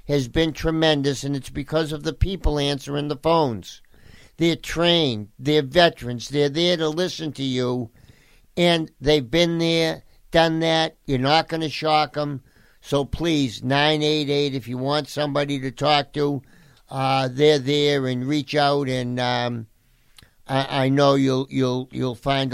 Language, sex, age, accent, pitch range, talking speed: English, male, 50-69, American, 125-150 Hz, 155 wpm